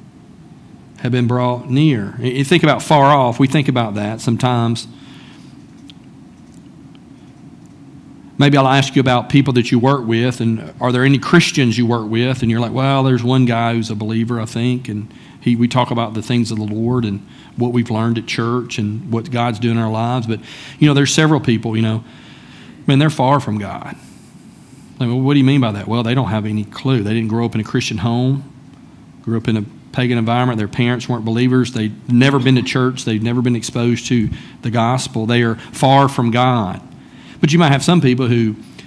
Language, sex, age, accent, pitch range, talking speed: English, male, 40-59, American, 115-130 Hz, 210 wpm